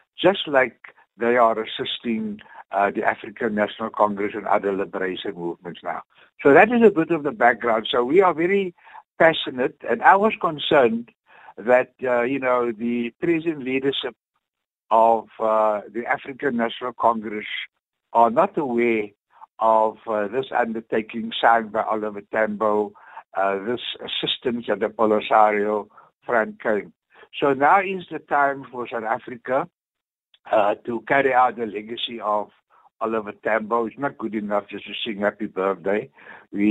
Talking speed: 150 wpm